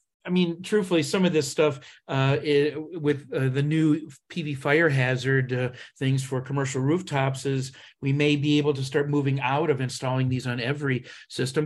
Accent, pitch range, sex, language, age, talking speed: American, 125-150 Hz, male, English, 40-59, 185 wpm